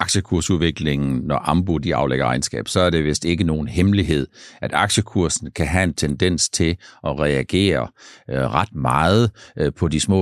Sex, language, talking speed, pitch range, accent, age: male, Danish, 170 wpm, 80-110 Hz, native, 60-79